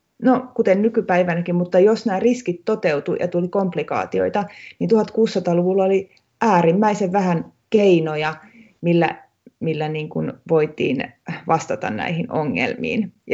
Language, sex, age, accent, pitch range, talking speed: Finnish, female, 30-49, native, 165-215 Hz, 110 wpm